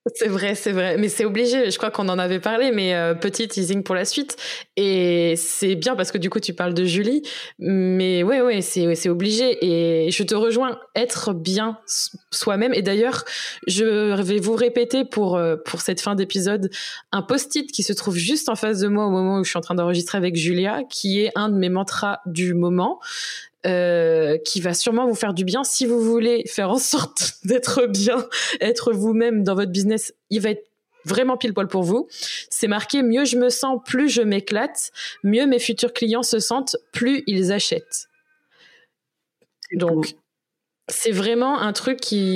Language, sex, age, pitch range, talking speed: French, female, 20-39, 185-235 Hz, 195 wpm